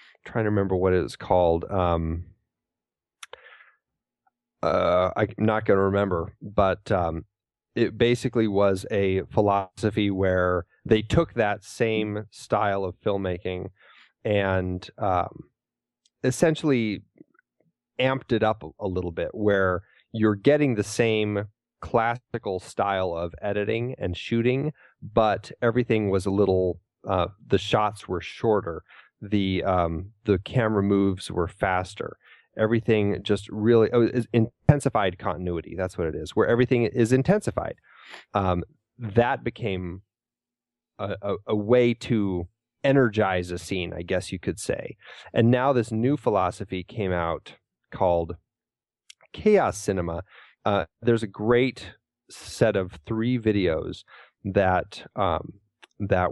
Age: 30-49